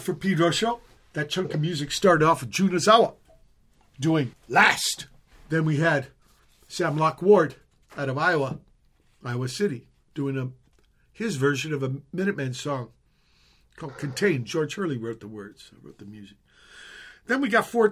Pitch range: 125-170 Hz